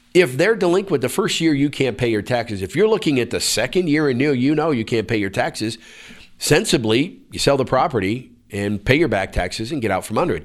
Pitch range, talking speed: 100-135 Hz, 245 wpm